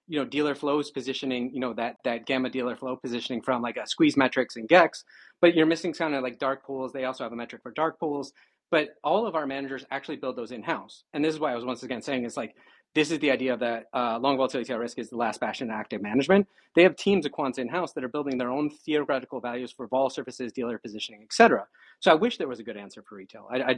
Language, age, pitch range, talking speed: English, 30-49, 125-150 Hz, 260 wpm